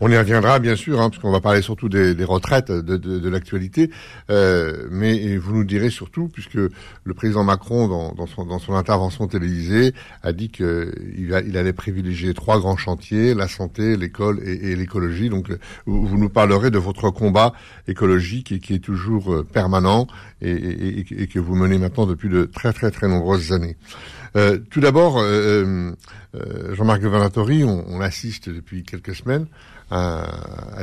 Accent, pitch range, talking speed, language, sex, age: French, 90-110 Hz, 180 wpm, French, male, 60-79